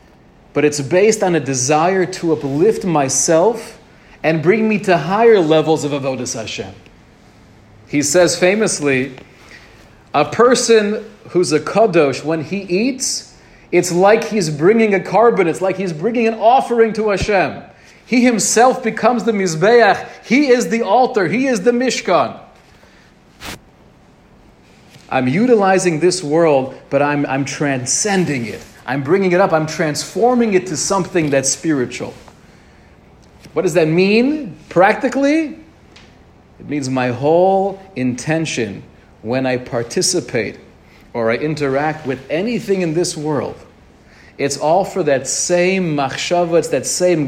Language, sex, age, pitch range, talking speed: English, male, 40-59, 140-205 Hz, 135 wpm